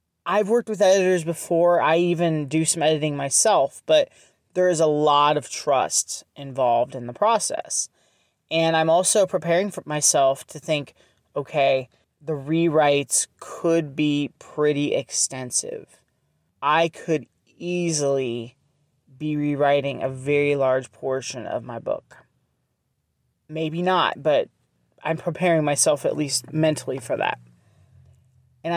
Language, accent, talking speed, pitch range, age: English, American, 125 wpm, 130-165 Hz, 30-49